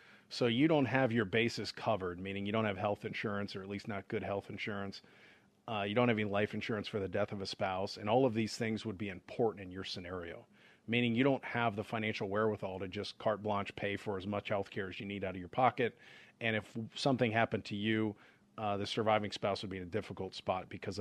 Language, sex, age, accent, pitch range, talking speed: English, male, 40-59, American, 100-120 Hz, 245 wpm